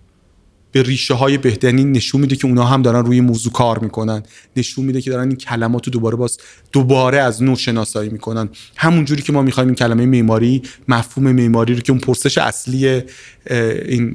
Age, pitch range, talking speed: 30-49, 115-135 Hz, 185 wpm